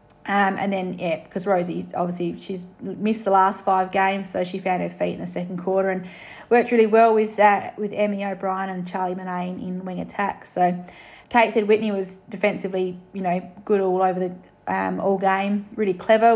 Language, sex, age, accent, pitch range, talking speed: English, female, 30-49, Australian, 185-215 Hz, 200 wpm